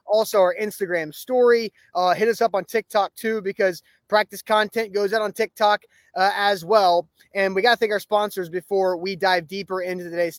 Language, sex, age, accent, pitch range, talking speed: English, male, 20-39, American, 175-200 Hz, 195 wpm